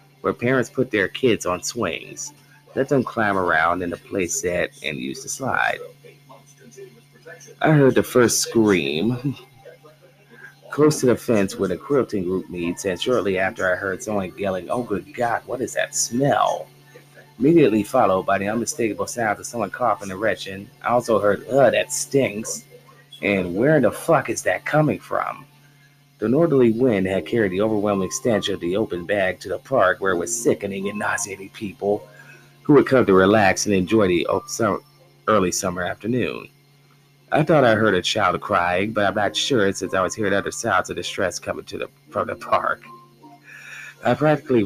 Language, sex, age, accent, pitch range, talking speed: English, male, 30-49, American, 95-135 Hz, 175 wpm